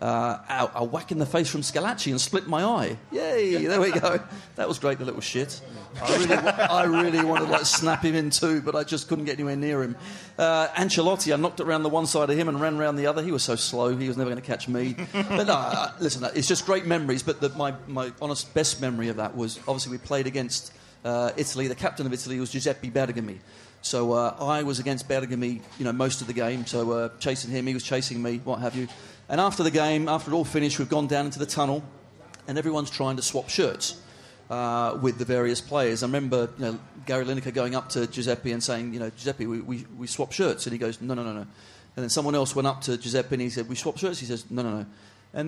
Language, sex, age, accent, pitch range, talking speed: English, male, 40-59, British, 120-150 Hz, 255 wpm